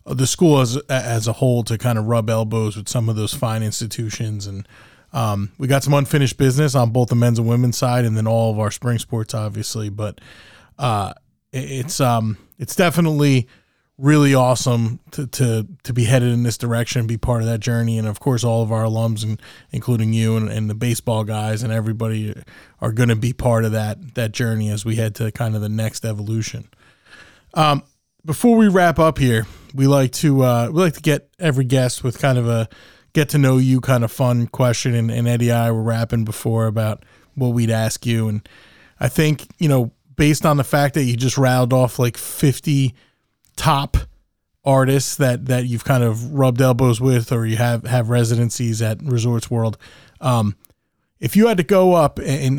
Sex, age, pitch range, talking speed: male, 20-39, 110-135 Hz, 200 wpm